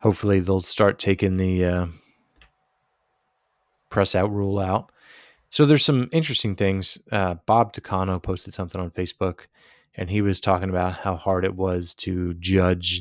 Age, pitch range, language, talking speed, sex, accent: 20-39, 90-105 Hz, English, 150 wpm, male, American